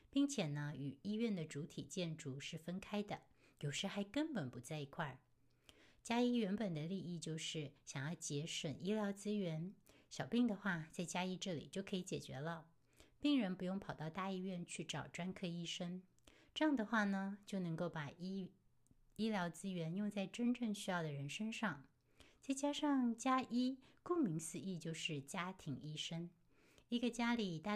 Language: Chinese